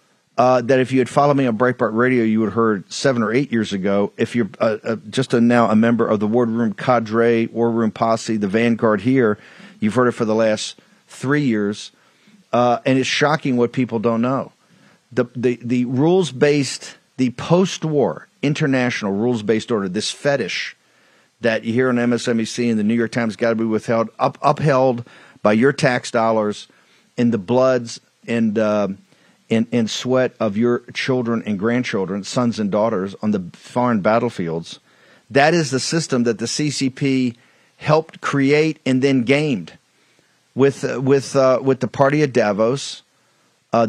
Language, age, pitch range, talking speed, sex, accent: English, 50-69, 115-135 Hz, 170 wpm, male, American